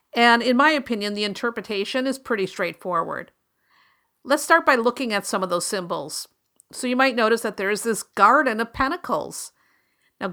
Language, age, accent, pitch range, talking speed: English, 50-69, American, 195-260 Hz, 175 wpm